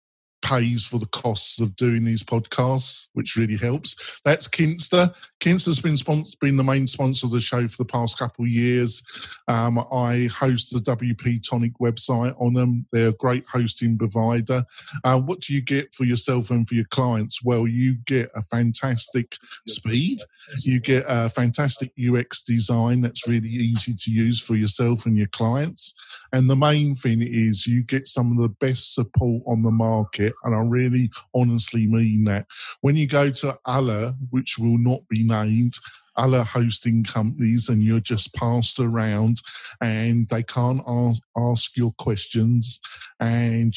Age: 40-59